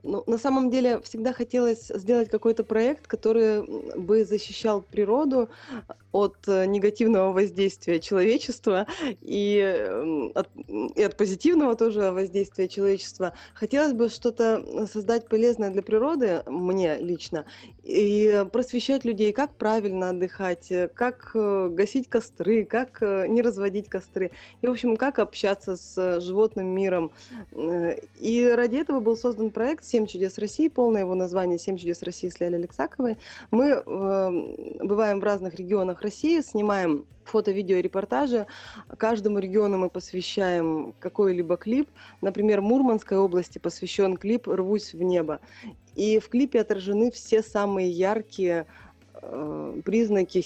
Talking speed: 125 wpm